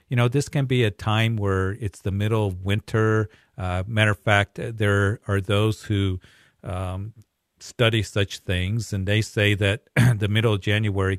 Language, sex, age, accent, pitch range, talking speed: English, male, 50-69, American, 95-110 Hz, 175 wpm